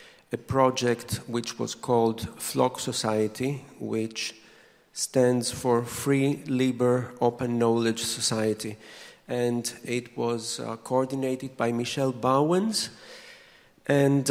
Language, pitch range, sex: English, 115-140 Hz, male